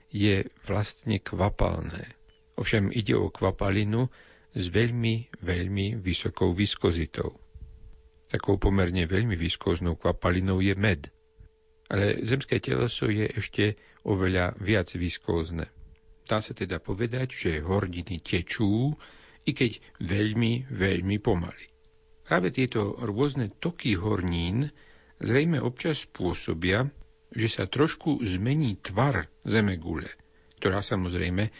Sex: male